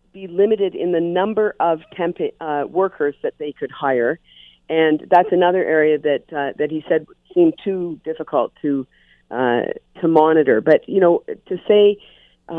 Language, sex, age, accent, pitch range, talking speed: English, female, 40-59, American, 140-175 Hz, 155 wpm